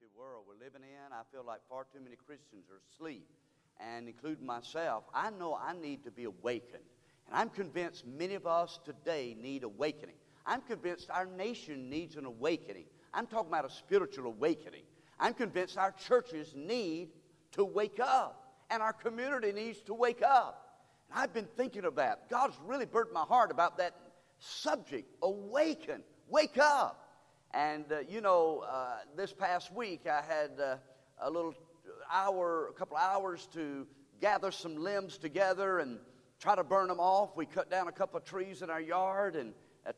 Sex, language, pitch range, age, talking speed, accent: male, English, 150-200 Hz, 50-69, 175 wpm, American